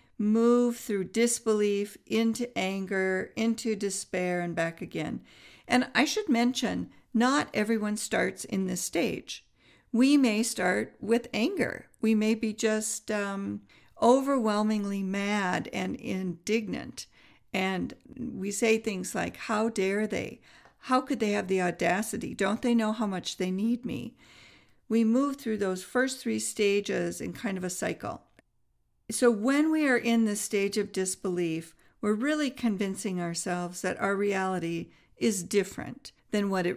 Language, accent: English, American